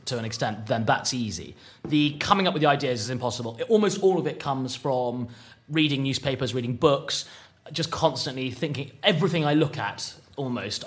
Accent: British